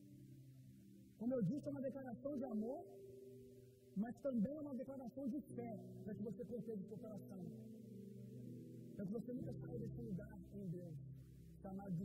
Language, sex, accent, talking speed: Gujarati, male, Brazilian, 165 wpm